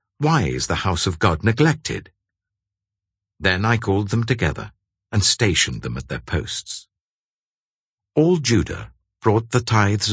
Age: 60-79